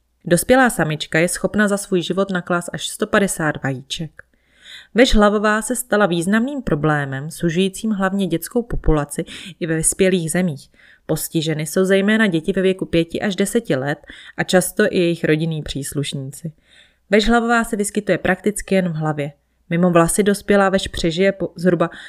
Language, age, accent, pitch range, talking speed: Czech, 30-49, native, 155-205 Hz, 150 wpm